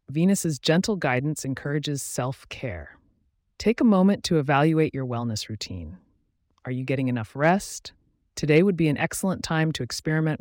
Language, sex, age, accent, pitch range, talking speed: English, female, 30-49, American, 120-160 Hz, 150 wpm